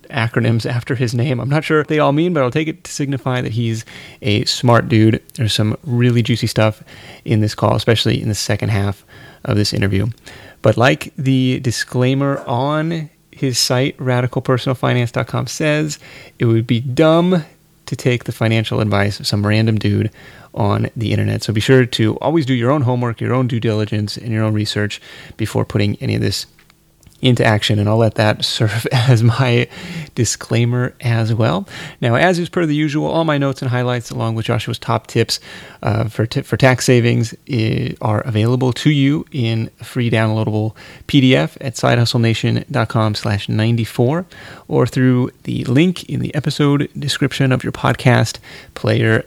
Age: 30-49